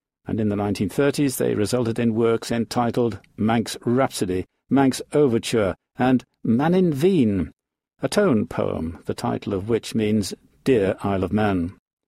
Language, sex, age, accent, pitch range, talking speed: English, male, 50-69, British, 110-145 Hz, 135 wpm